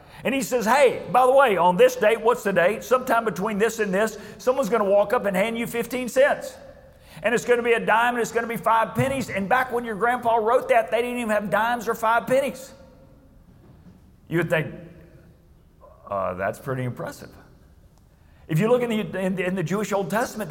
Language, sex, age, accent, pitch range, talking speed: English, male, 50-69, American, 175-235 Hz, 215 wpm